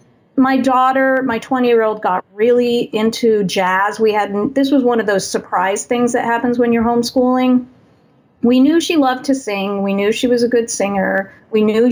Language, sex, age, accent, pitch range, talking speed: English, female, 40-59, American, 195-235 Hz, 195 wpm